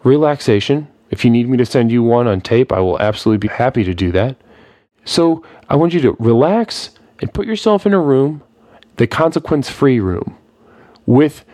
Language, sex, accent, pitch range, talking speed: English, male, American, 110-145 Hz, 180 wpm